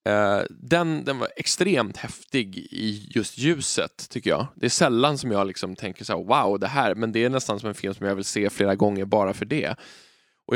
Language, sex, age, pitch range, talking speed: Swedish, male, 20-39, 100-125 Hz, 220 wpm